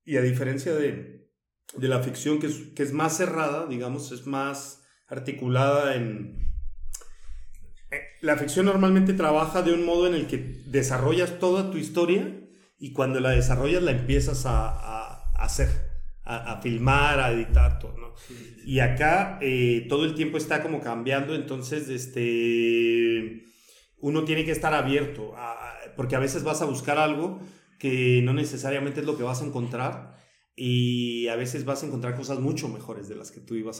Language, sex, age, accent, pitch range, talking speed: Spanish, male, 40-59, Mexican, 120-145 Hz, 170 wpm